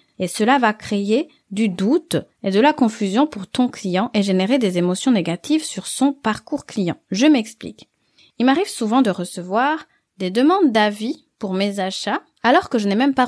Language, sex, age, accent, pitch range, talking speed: French, female, 20-39, French, 200-285 Hz, 185 wpm